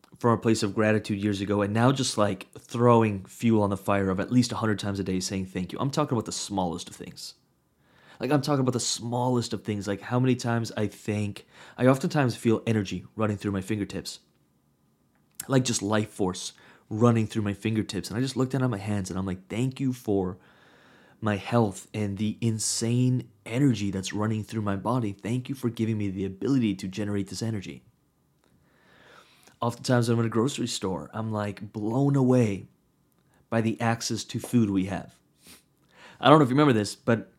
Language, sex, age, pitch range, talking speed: English, male, 20-39, 100-125 Hz, 200 wpm